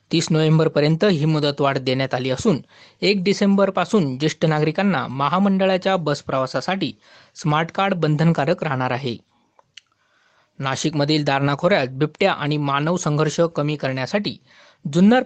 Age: 20-39